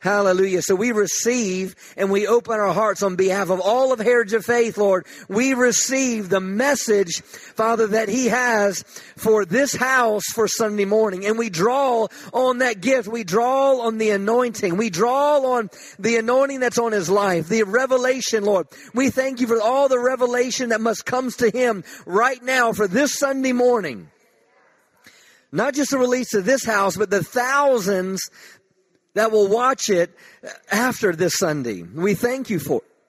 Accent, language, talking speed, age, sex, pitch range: American, English, 170 wpm, 40-59, male, 190-240 Hz